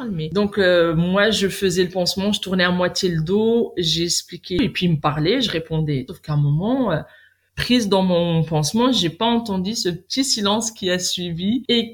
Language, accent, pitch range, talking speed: French, French, 175-230 Hz, 205 wpm